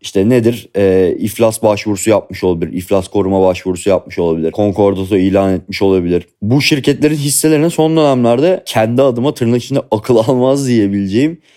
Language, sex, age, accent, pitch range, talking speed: Turkish, male, 30-49, native, 100-125 Hz, 145 wpm